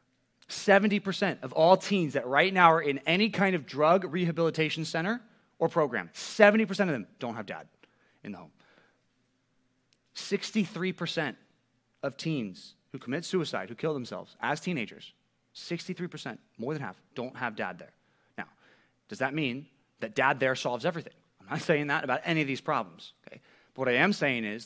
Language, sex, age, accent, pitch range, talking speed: English, male, 30-49, American, 125-170 Hz, 170 wpm